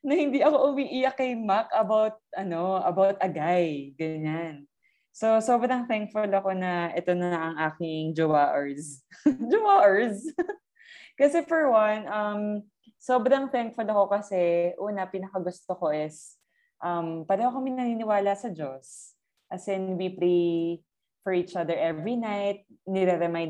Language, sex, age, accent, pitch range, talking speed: Filipino, female, 20-39, native, 170-220 Hz, 135 wpm